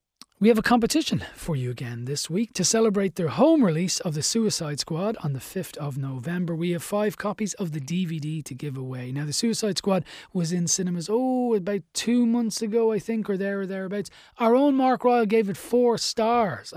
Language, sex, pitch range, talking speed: English, male, 145-195 Hz, 210 wpm